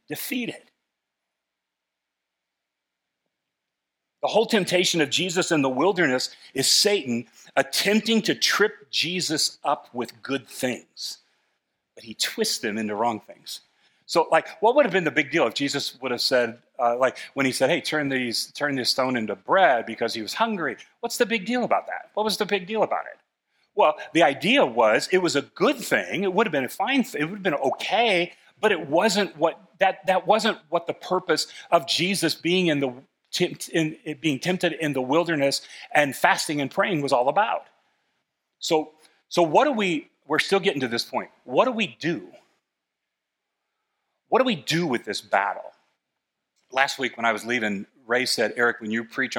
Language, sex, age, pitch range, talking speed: English, male, 40-59, 125-195 Hz, 185 wpm